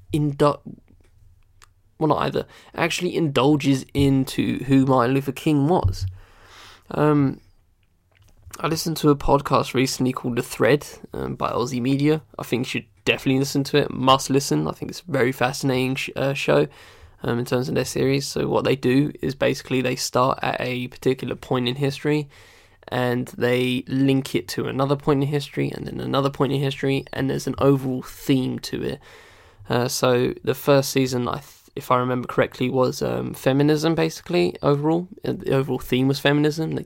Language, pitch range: English, 120-140 Hz